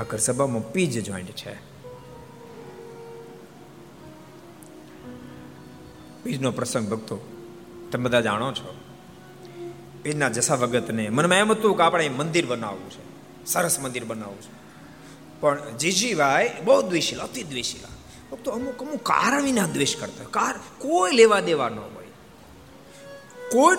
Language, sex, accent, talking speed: Gujarati, male, native, 45 wpm